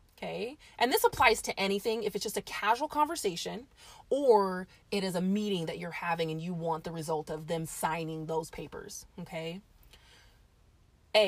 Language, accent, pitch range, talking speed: English, American, 165-205 Hz, 170 wpm